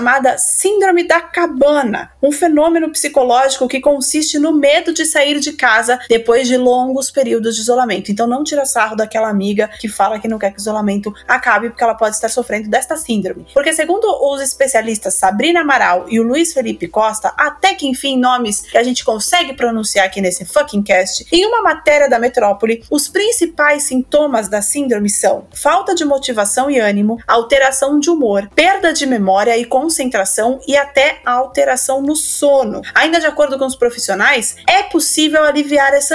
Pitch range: 230-295 Hz